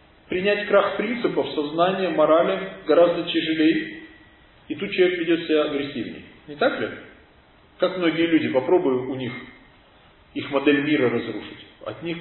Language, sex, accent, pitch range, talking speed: Russian, male, native, 150-200 Hz, 140 wpm